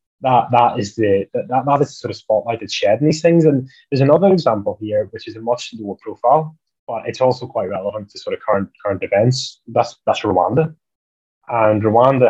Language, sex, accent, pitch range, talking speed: English, male, British, 100-135 Hz, 210 wpm